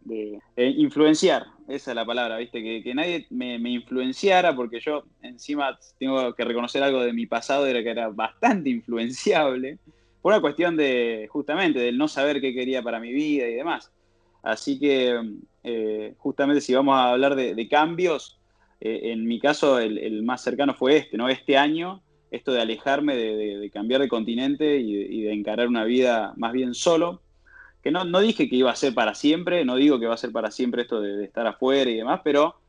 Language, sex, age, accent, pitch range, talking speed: Spanish, male, 20-39, Argentinian, 115-140 Hz, 205 wpm